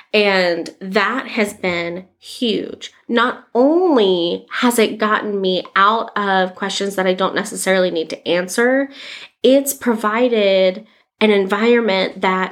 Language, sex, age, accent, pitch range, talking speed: English, female, 20-39, American, 185-225 Hz, 125 wpm